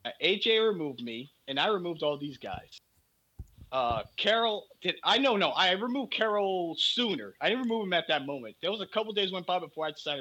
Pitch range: 135-200 Hz